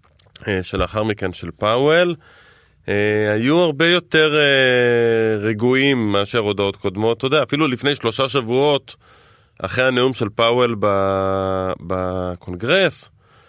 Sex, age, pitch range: male, 20-39, 100-135 Hz